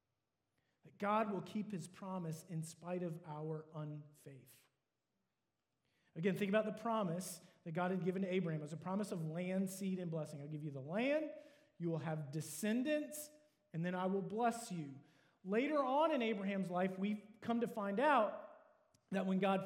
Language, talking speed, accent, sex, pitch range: English, 180 wpm, American, male, 170-225 Hz